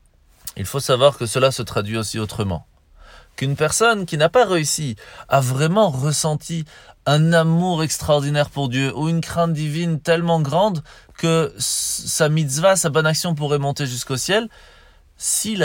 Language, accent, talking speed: French, French, 155 wpm